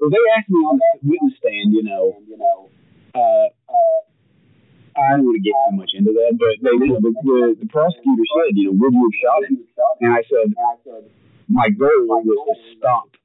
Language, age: English, 40-59